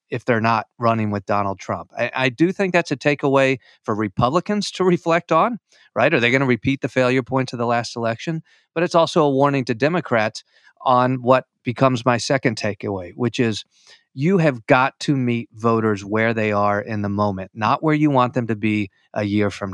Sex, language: male, English